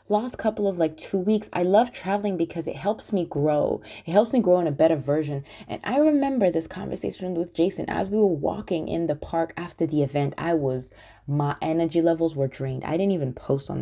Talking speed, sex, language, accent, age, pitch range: 220 wpm, female, English, American, 20-39, 120-165 Hz